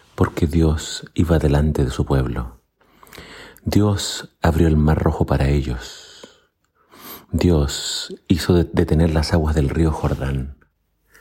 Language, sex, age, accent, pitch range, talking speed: Spanish, male, 40-59, Argentinian, 70-85 Hz, 120 wpm